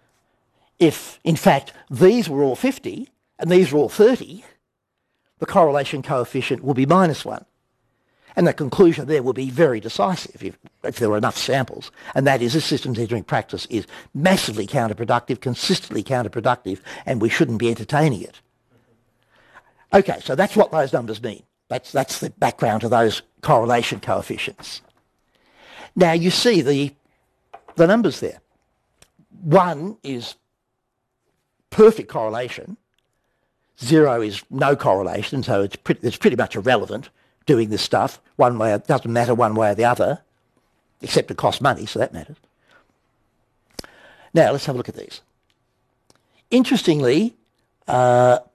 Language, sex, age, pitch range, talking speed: English, male, 60-79, 120-165 Hz, 145 wpm